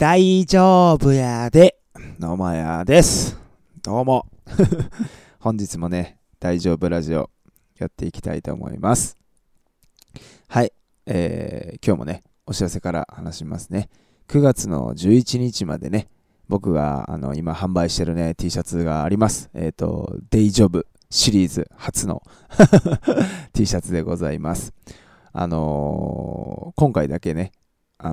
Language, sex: Japanese, male